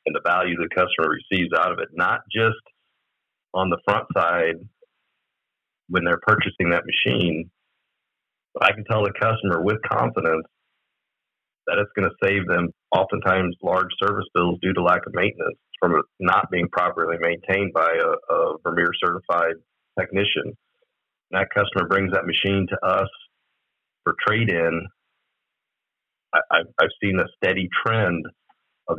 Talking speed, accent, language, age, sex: 150 wpm, American, English, 40-59, male